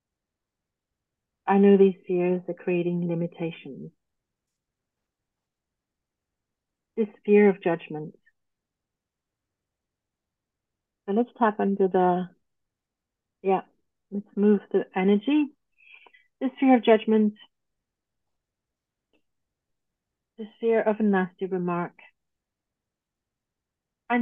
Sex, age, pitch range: female, 50-69, 185-245 Hz